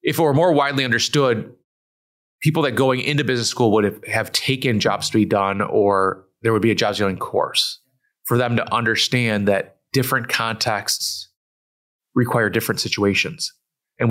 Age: 30-49